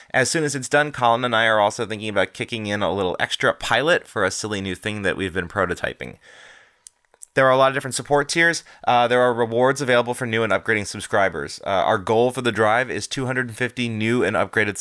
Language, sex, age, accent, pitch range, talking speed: English, male, 20-39, American, 105-140 Hz, 225 wpm